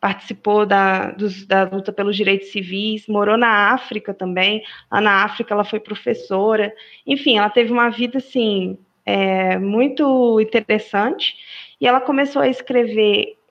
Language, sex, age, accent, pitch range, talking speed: Portuguese, female, 20-39, Brazilian, 195-230 Hz, 140 wpm